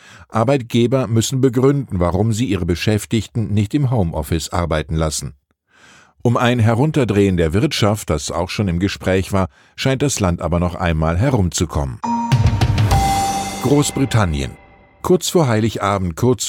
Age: 50-69